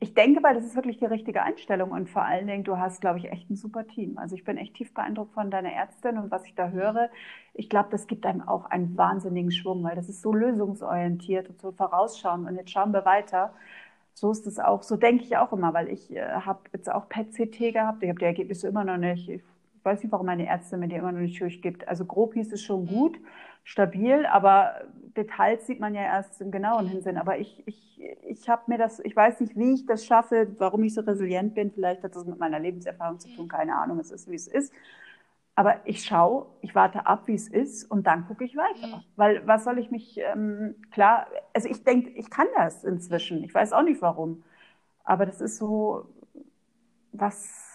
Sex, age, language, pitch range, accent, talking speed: female, 40-59, German, 185-230 Hz, German, 225 wpm